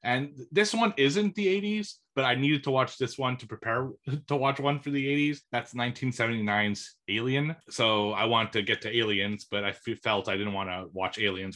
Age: 30-49